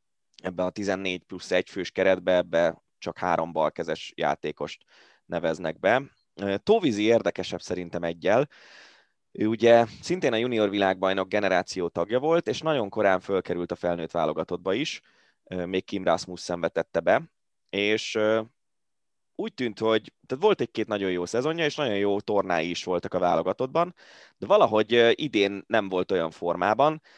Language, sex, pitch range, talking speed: Hungarian, male, 95-125 Hz, 145 wpm